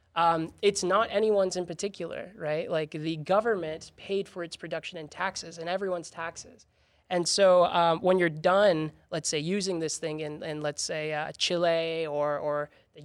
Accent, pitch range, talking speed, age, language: American, 160-200 Hz, 180 wpm, 20-39, English